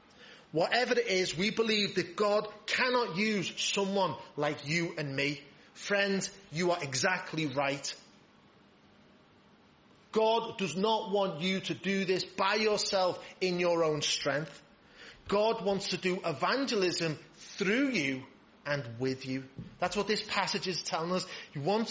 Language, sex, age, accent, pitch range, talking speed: English, male, 30-49, British, 155-200 Hz, 140 wpm